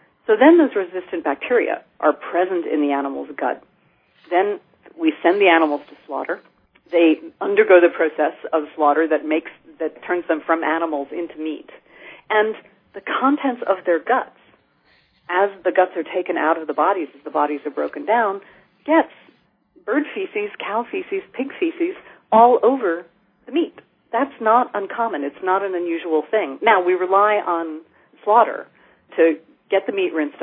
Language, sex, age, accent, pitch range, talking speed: English, female, 40-59, American, 155-220 Hz, 165 wpm